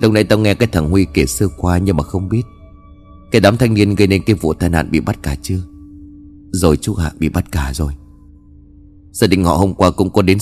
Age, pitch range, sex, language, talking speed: 30-49, 80-110 Hz, male, Vietnamese, 250 wpm